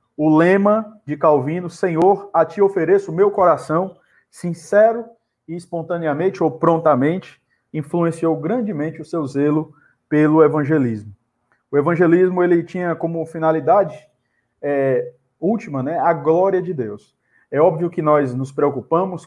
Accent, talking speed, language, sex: Brazilian, 130 wpm, Portuguese, male